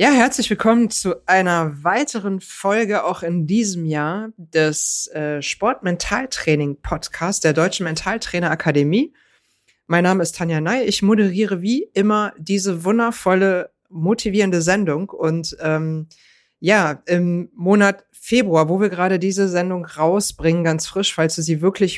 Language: German